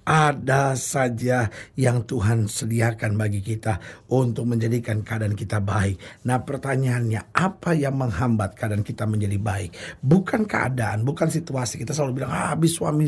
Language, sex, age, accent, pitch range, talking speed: Indonesian, male, 50-69, native, 120-155 Hz, 140 wpm